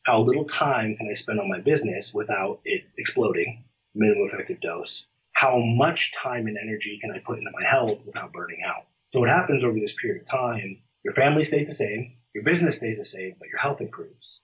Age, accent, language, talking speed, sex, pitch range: 30-49, American, English, 210 wpm, male, 115-150 Hz